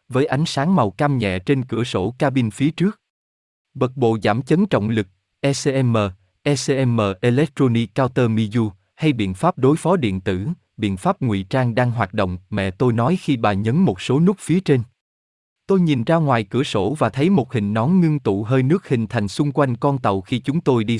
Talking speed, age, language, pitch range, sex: 210 wpm, 20-39, Vietnamese, 105-150 Hz, male